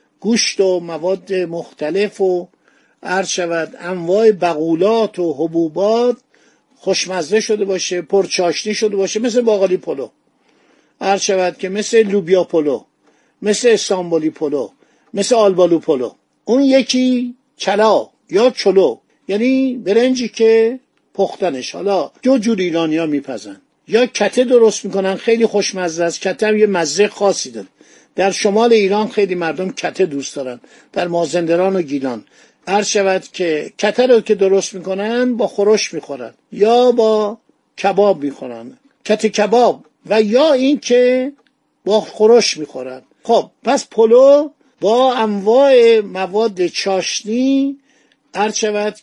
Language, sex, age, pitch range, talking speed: Persian, male, 50-69, 180-225 Hz, 120 wpm